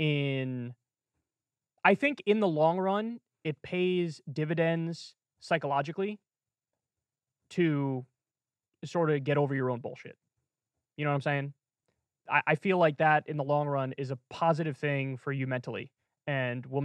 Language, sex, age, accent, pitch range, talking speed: English, male, 20-39, American, 140-195 Hz, 150 wpm